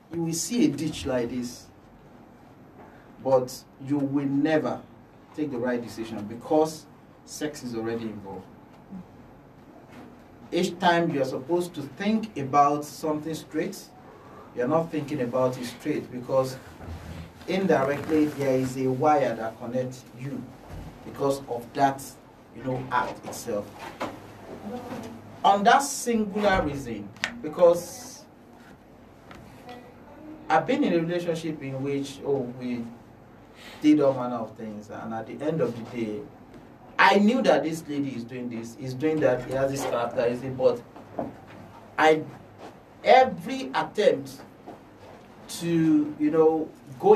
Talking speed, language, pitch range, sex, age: 130 wpm, English, 120-165 Hz, male, 40-59